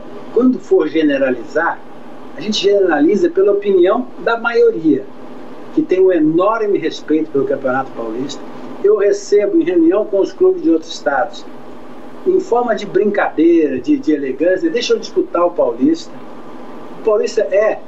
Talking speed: 145 wpm